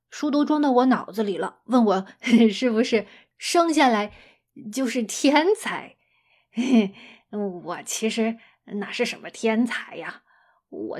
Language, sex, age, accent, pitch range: Chinese, female, 20-39, native, 220-320 Hz